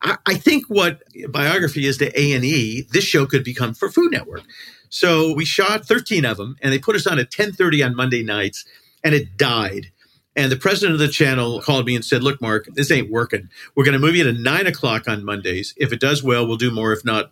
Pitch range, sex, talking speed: 110-145 Hz, male, 230 wpm